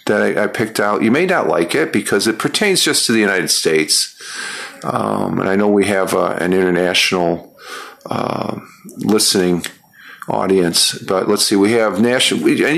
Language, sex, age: English, male, 50-69